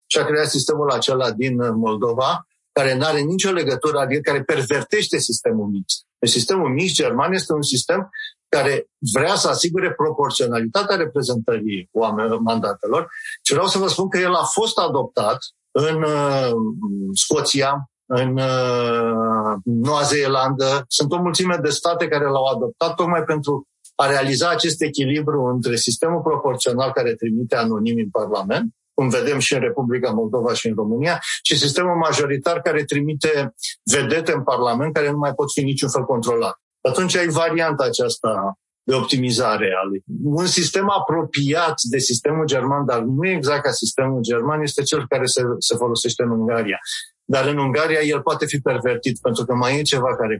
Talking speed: 155 wpm